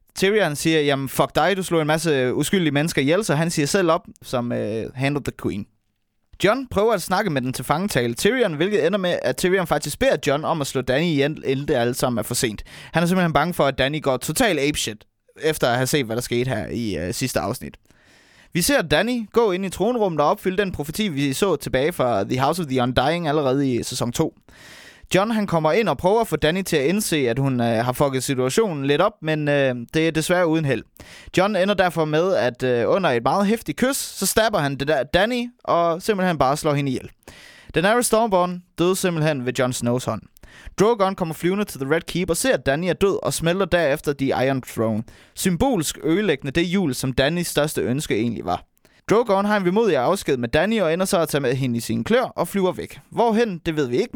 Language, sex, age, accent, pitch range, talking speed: Danish, male, 20-39, native, 135-190 Hz, 235 wpm